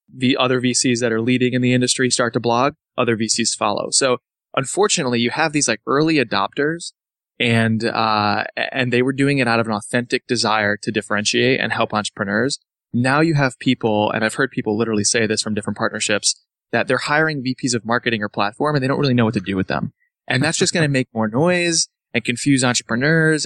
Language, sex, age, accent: English, male, 20-39, American